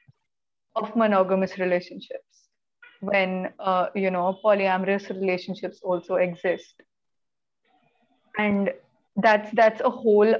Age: 20-39